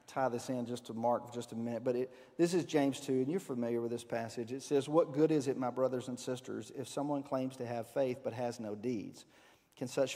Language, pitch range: English, 120-145 Hz